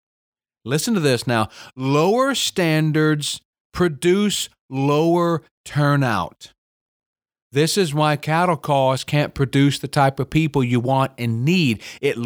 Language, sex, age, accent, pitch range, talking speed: English, male, 40-59, American, 130-170 Hz, 120 wpm